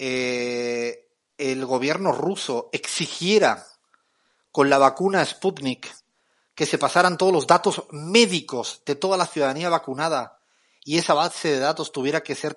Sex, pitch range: male, 130-170 Hz